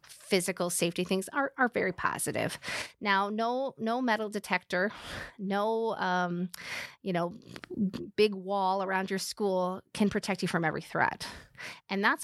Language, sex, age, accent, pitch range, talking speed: English, female, 30-49, American, 175-205 Hz, 145 wpm